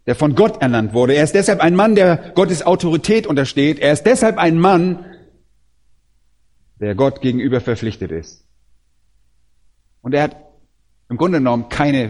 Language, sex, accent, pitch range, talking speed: German, male, German, 115-180 Hz, 155 wpm